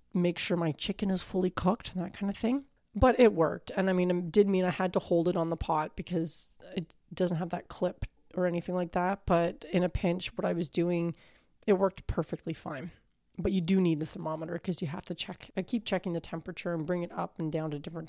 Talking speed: 250 wpm